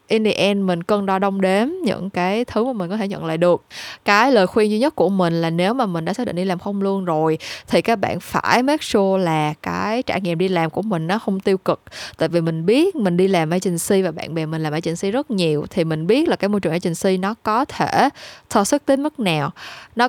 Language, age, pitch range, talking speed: Vietnamese, 20-39, 170-220 Hz, 265 wpm